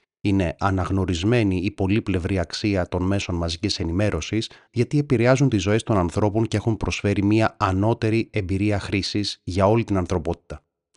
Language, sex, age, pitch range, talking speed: Greek, male, 30-49, 90-110 Hz, 150 wpm